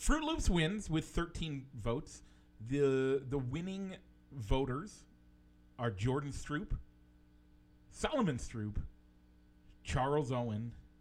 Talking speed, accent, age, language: 95 wpm, American, 40-59, English